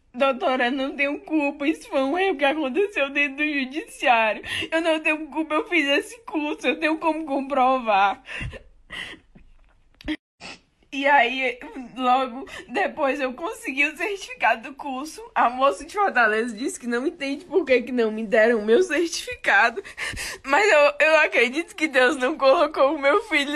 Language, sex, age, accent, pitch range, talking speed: Portuguese, female, 20-39, Brazilian, 255-330 Hz, 165 wpm